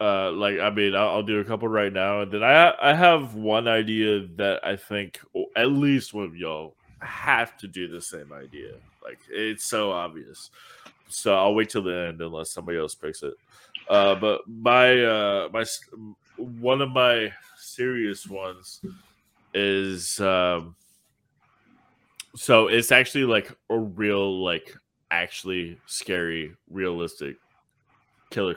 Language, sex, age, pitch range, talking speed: English, male, 20-39, 95-120 Hz, 150 wpm